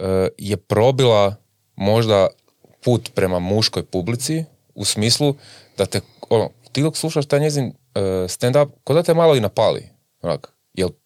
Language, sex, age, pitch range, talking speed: Croatian, male, 30-49, 95-130 Hz, 130 wpm